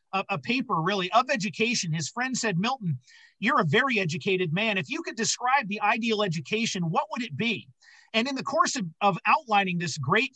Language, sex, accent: English, male, American